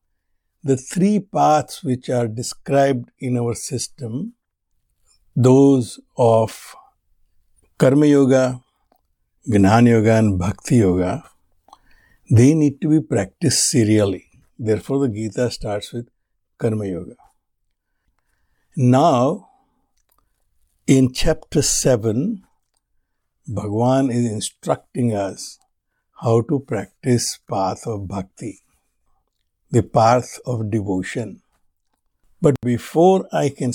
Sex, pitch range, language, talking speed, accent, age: male, 110-140 Hz, English, 95 wpm, Indian, 60-79